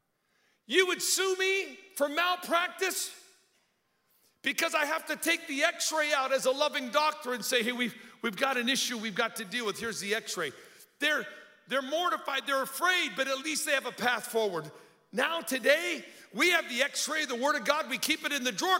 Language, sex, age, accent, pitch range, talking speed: English, male, 50-69, American, 235-305 Hz, 200 wpm